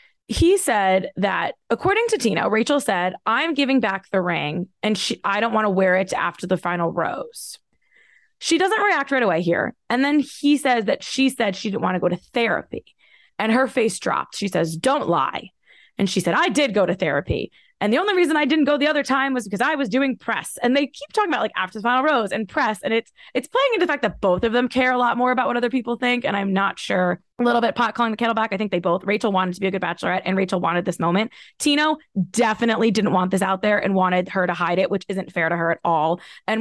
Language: English